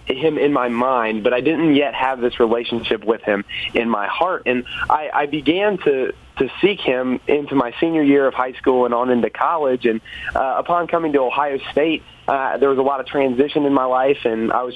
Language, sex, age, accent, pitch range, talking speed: English, male, 30-49, American, 125-145 Hz, 225 wpm